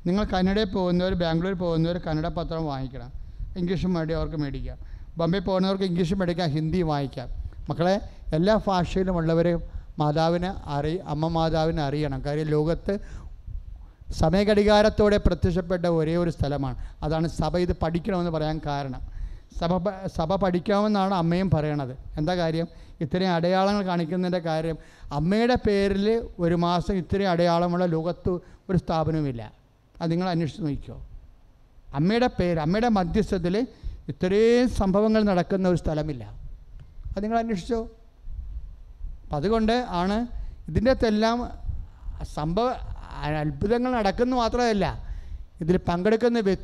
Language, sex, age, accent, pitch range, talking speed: English, male, 30-49, Indian, 155-195 Hz, 100 wpm